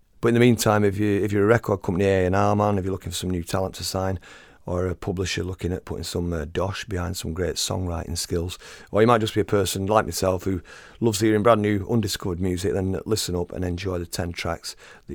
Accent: British